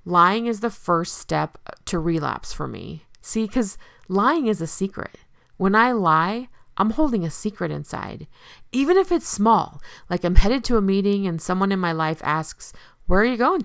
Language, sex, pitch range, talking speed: English, female, 165-245 Hz, 190 wpm